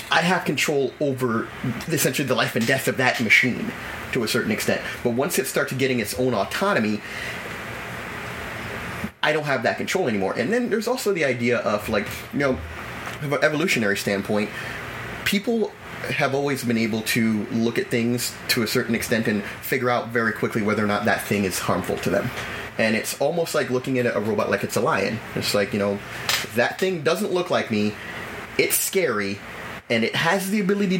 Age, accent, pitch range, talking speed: 30-49, American, 115-170 Hz, 195 wpm